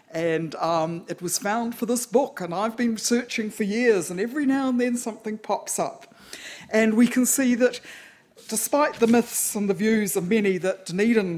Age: 50-69